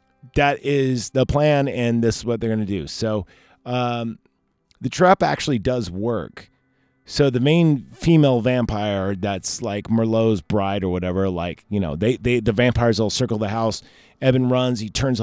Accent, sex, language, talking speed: American, male, English, 175 wpm